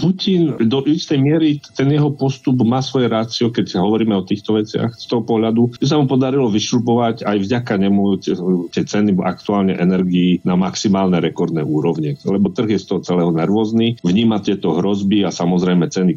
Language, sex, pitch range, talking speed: Slovak, male, 85-110 Hz, 175 wpm